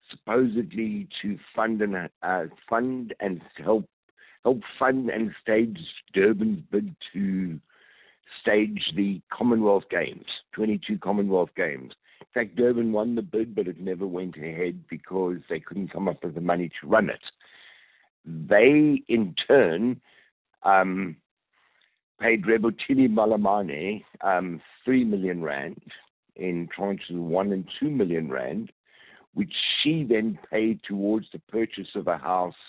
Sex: male